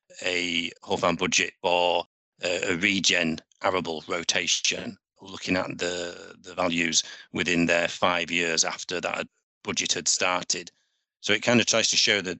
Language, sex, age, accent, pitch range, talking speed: English, male, 40-59, British, 85-95 Hz, 150 wpm